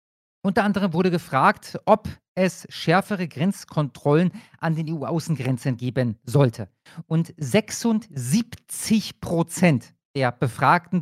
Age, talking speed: 40-59, 100 wpm